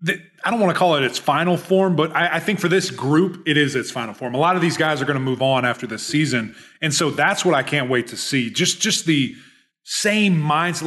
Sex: male